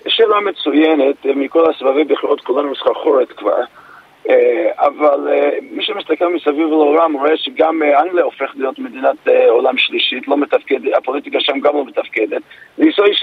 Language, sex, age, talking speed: Hebrew, male, 40-59, 130 wpm